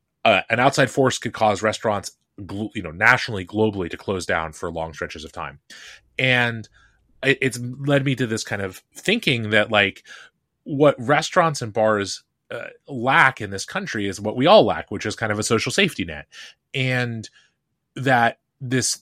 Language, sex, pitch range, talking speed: English, male, 100-135 Hz, 180 wpm